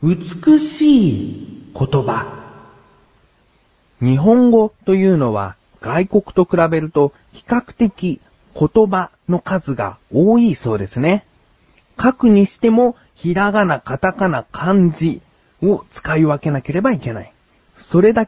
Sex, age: male, 40-59